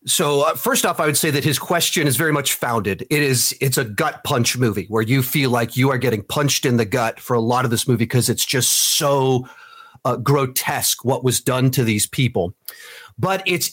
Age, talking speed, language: 40-59, 225 wpm, English